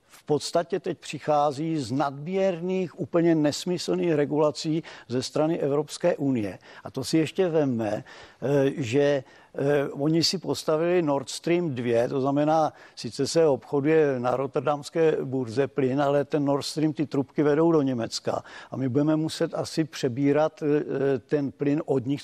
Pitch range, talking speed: 135-155 Hz, 145 wpm